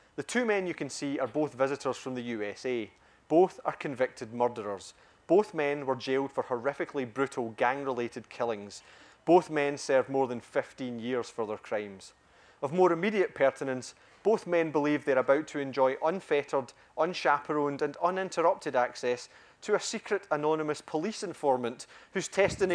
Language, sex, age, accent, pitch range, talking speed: English, male, 30-49, British, 125-180 Hz, 155 wpm